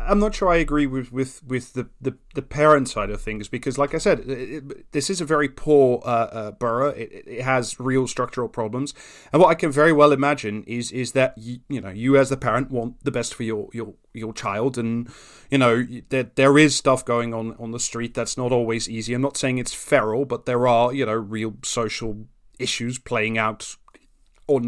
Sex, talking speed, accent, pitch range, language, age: male, 225 wpm, British, 115-145 Hz, English, 30-49